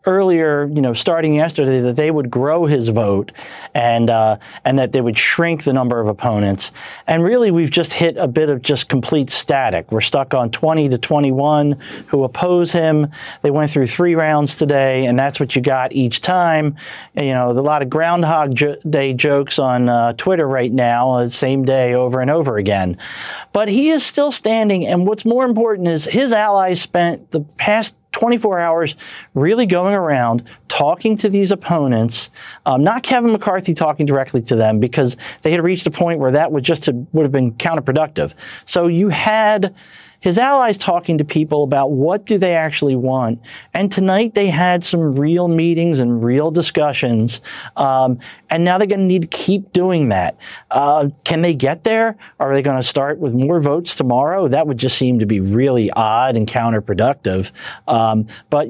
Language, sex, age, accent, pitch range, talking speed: English, male, 40-59, American, 130-175 Hz, 185 wpm